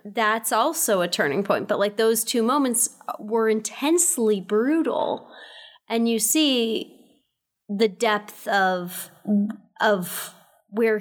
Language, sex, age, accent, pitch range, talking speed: English, female, 30-49, American, 200-240 Hz, 115 wpm